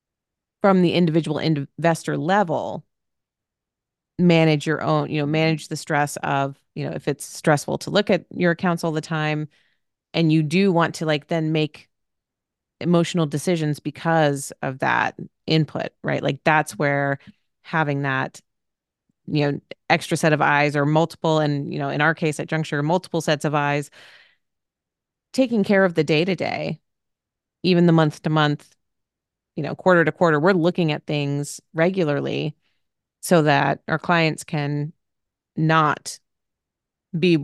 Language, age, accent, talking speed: English, 30-49, American, 145 wpm